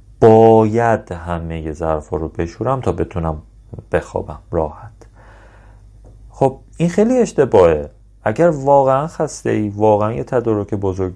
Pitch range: 95-125 Hz